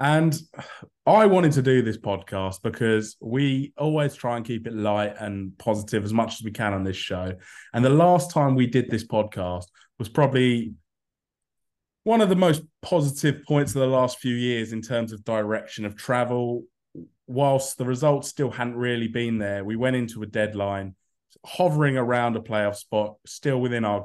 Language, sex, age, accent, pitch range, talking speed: English, male, 20-39, British, 105-125 Hz, 180 wpm